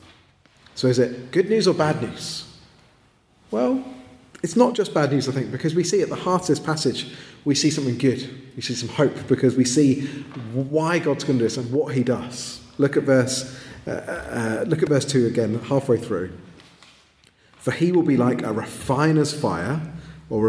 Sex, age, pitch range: male, 30-49, 120-155 Hz